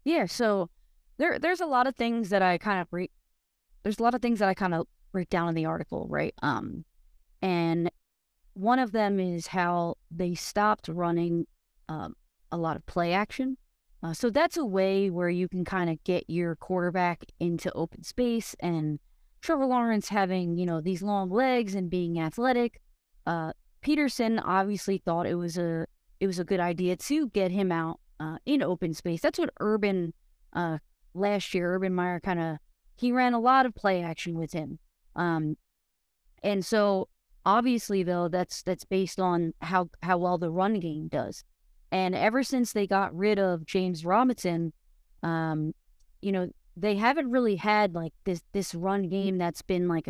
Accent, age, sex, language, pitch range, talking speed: American, 20-39, female, English, 170-210 Hz, 180 wpm